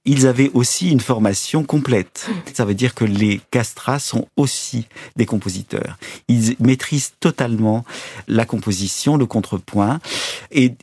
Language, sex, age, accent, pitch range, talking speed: French, male, 50-69, French, 100-135 Hz, 135 wpm